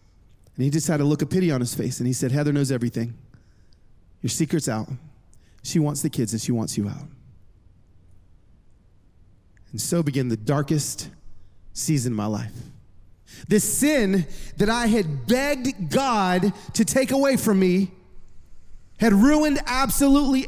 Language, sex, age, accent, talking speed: English, male, 30-49, American, 155 wpm